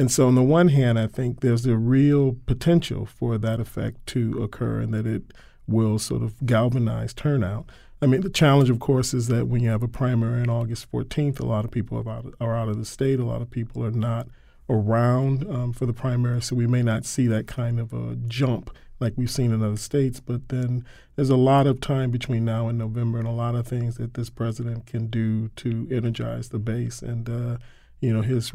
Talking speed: 225 wpm